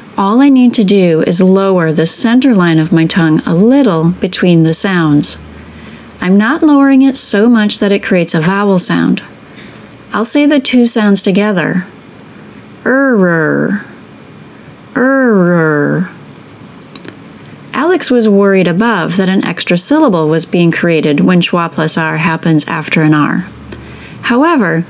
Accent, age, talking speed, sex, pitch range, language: American, 30-49, 140 wpm, female, 165-225 Hz, English